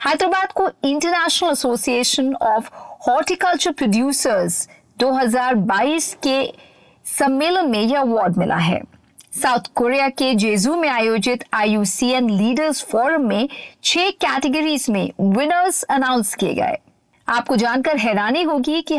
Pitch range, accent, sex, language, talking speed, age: 225-315 Hz, native, female, Hindi, 115 wpm, 50-69